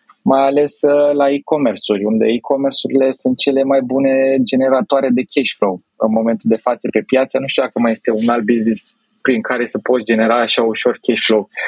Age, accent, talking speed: 20-39, native, 190 wpm